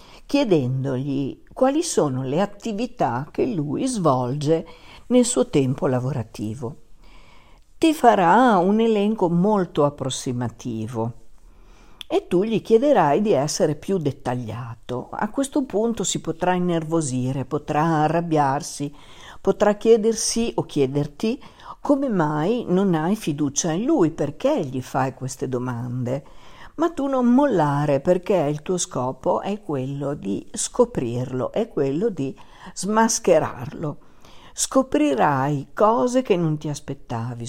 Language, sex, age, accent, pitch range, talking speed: Italian, female, 50-69, native, 135-205 Hz, 115 wpm